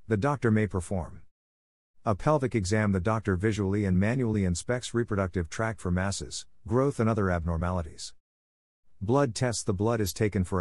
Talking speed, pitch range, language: 160 wpm, 85-110 Hz, English